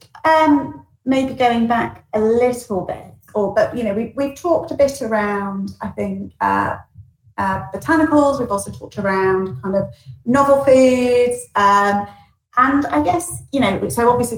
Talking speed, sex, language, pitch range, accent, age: 160 wpm, female, English, 195-245 Hz, British, 30-49